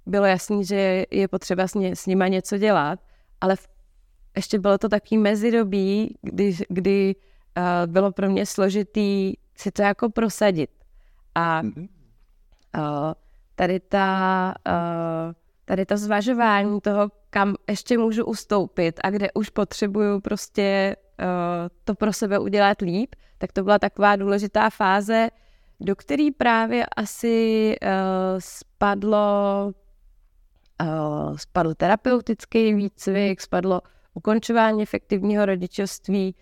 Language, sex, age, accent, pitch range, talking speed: Czech, female, 20-39, native, 185-215 Hz, 115 wpm